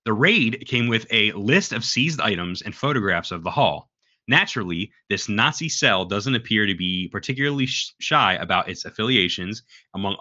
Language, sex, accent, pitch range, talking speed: English, male, American, 95-130 Hz, 165 wpm